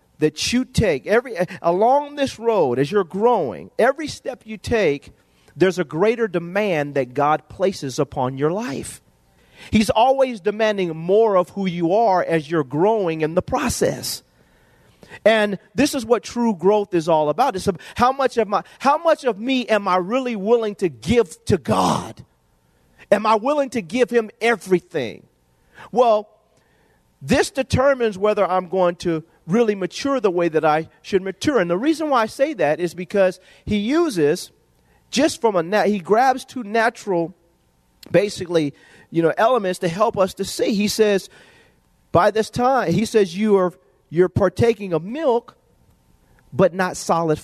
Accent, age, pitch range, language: American, 40-59, 160-225 Hz, English